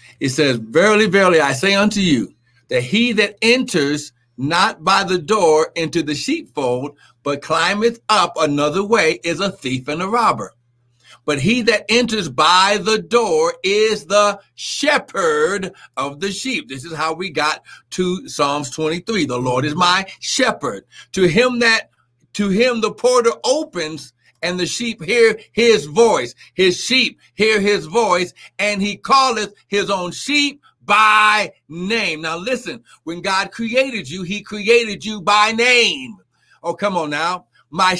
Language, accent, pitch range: English, American, 160-225 Hz